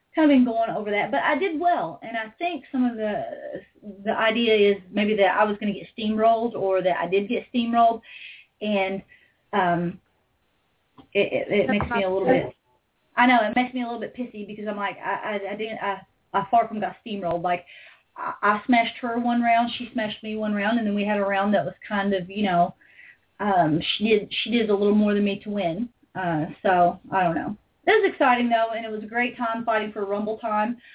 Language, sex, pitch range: English, female, 205-245 Hz